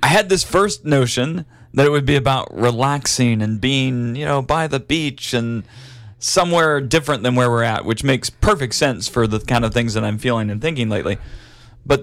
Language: English